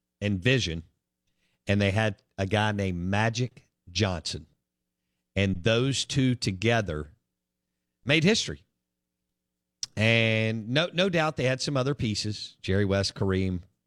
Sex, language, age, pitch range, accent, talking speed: male, English, 50-69, 85-115 Hz, American, 120 wpm